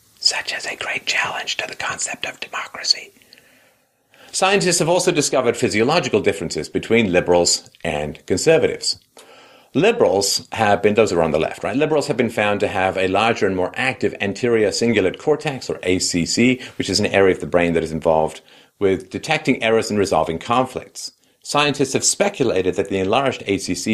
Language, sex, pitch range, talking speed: English, male, 90-130 Hz, 170 wpm